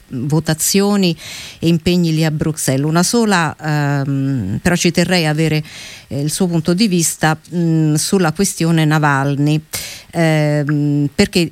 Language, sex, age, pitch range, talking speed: Italian, female, 50-69, 150-175 Hz, 120 wpm